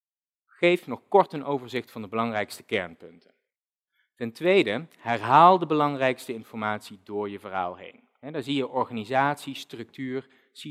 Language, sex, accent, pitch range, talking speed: Dutch, male, Dutch, 110-150 Hz, 140 wpm